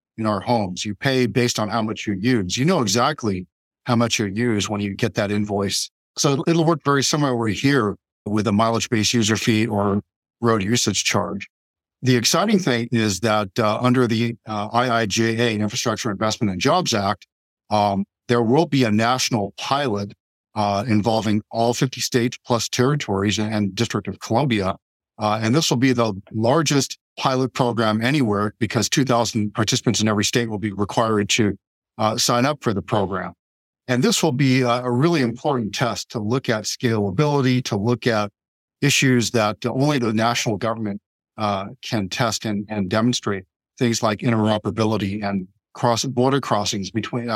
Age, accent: 50-69, American